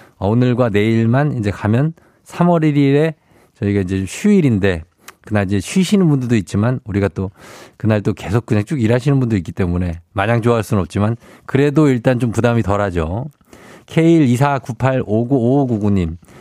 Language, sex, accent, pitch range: Korean, male, native, 100-135 Hz